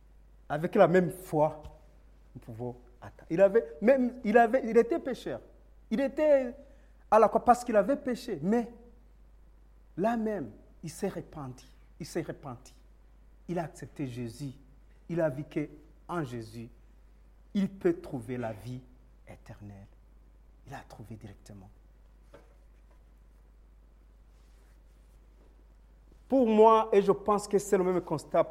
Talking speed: 125 wpm